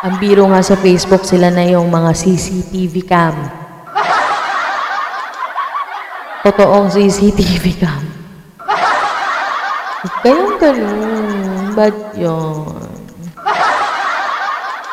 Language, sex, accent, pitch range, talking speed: Filipino, female, native, 155-195 Hz, 70 wpm